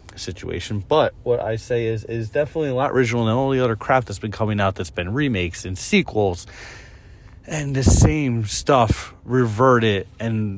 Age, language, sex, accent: 30-49, English, male, American